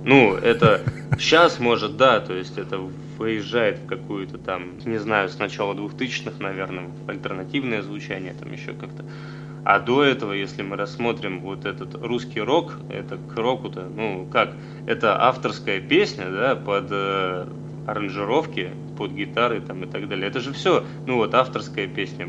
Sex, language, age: male, Russian, 20-39